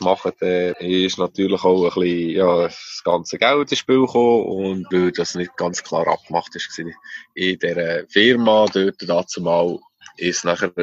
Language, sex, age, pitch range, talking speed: German, male, 20-39, 90-110 Hz, 165 wpm